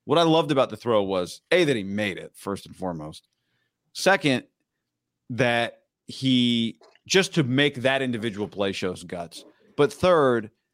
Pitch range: 100-130 Hz